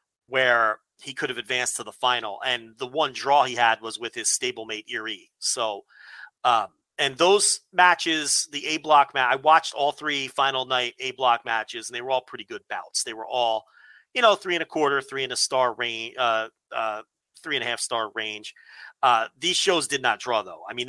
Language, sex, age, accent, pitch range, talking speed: English, male, 40-59, American, 120-155 Hz, 215 wpm